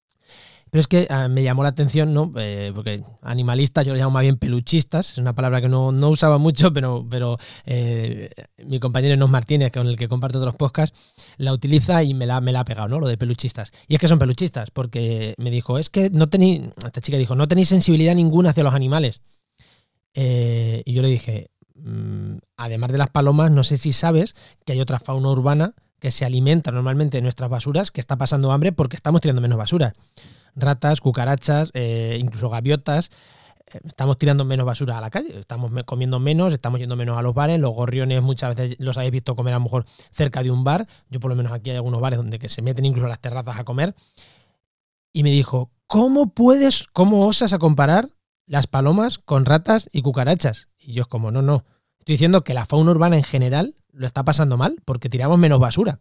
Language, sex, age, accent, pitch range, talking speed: Spanish, male, 20-39, Spanish, 125-150 Hz, 210 wpm